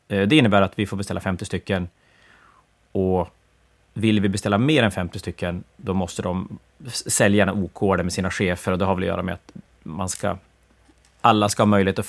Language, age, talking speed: Swedish, 30-49, 205 wpm